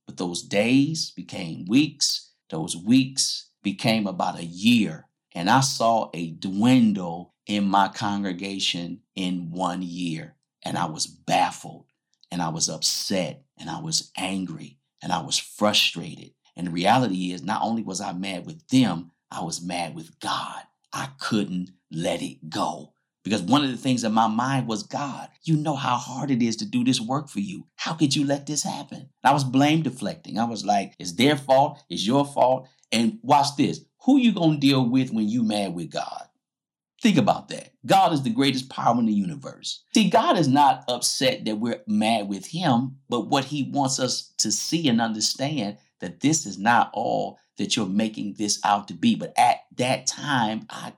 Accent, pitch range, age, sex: American, 95-140 Hz, 50-69, male